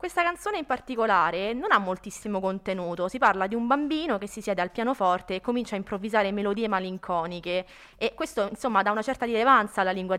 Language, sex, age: Italian, female, 20-39